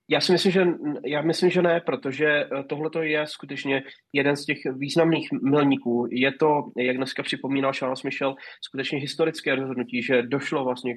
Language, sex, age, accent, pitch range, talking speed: Czech, male, 20-39, native, 120-140 Hz, 165 wpm